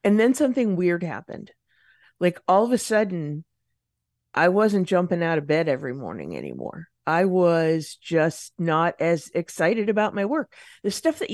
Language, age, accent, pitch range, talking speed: English, 50-69, American, 160-195 Hz, 165 wpm